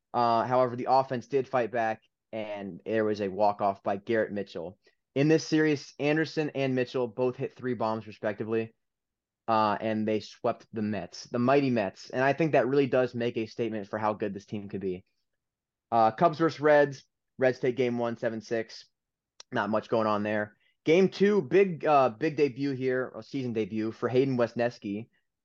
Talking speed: 180 wpm